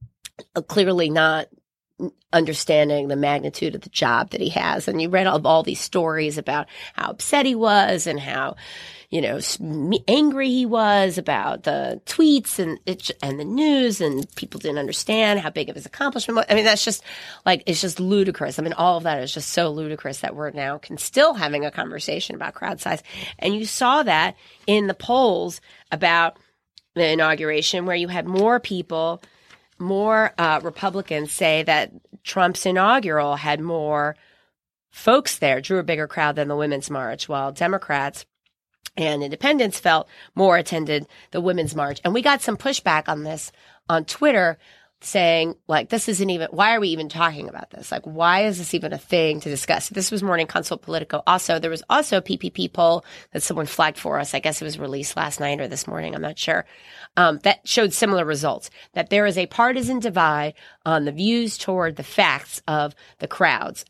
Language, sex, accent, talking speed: English, female, American, 185 wpm